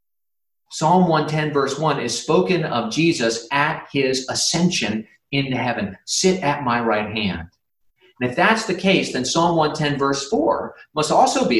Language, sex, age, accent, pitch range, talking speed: English, male, 30-49, American, 125-180 Hz, 160 wpm